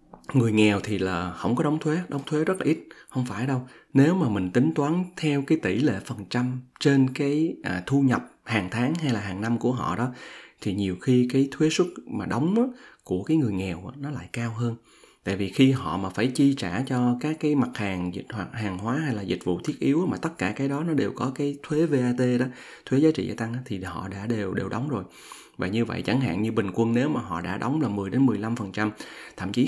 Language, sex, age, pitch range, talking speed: Vietnamese, male, 20-39, 100-135 Hz, 250 wpm